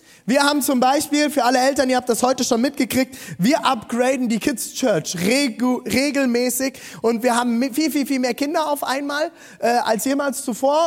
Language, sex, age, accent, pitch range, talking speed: German, male, 20-39, German, 215-275 Hz, 190 wpm